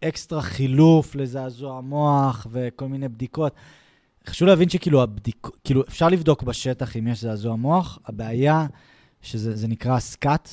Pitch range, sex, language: 120-150 Hz, male, Hebrew